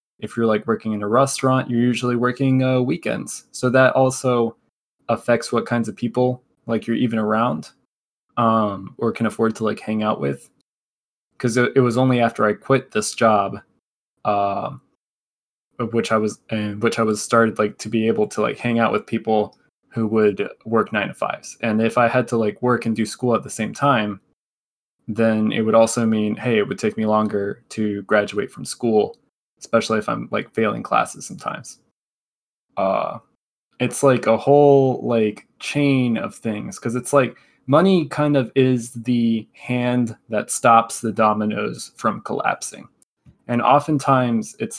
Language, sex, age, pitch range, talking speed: English, male, 20-39, 110-125 Hz, 175 wpm